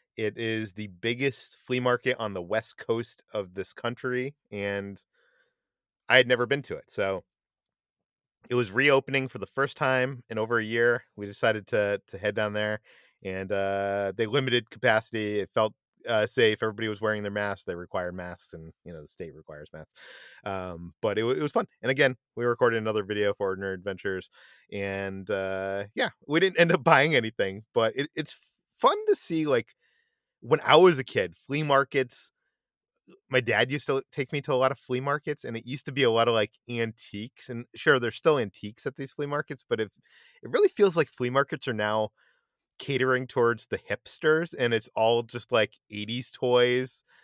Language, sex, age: English, male, 30-49